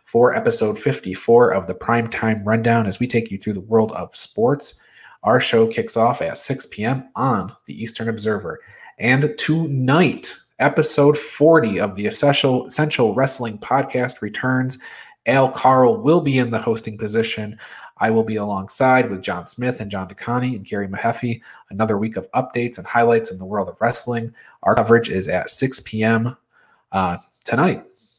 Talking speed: 160 wpm